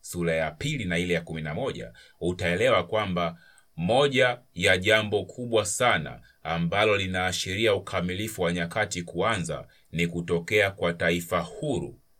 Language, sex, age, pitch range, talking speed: Swahili, male, 30-49, 85-100 Hz, 125 wpm